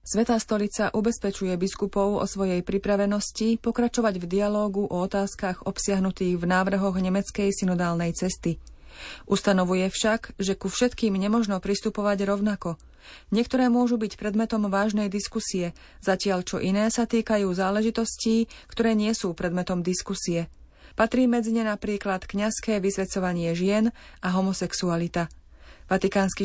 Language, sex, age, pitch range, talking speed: Slovak, female, 30-49, 185-215 Hz, 120 wpm